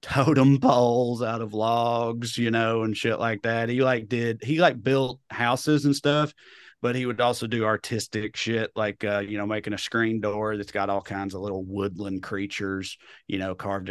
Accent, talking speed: American, 200 wpm